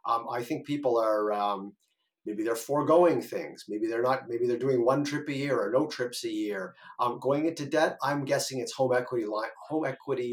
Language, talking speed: English, 205 wpm